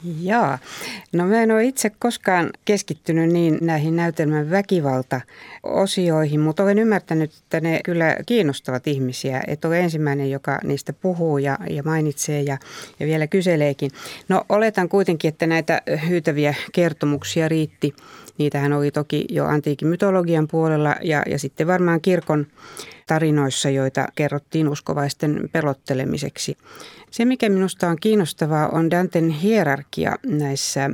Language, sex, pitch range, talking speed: Finnish, female, 145-175 Hz, 125 wpm